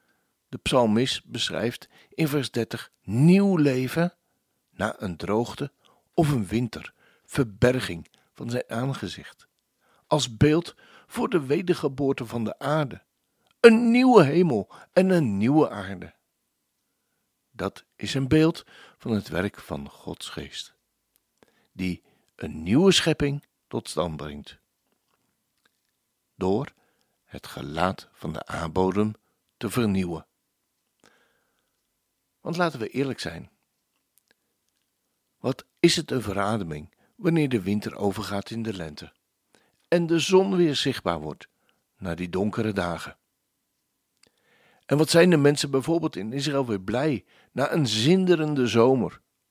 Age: 60-79